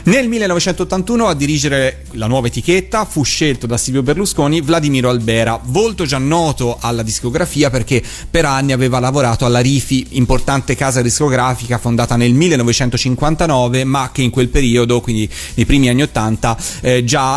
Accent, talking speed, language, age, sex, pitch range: native, 150 wpm, Italian, 30-49, male, 115-145 Hz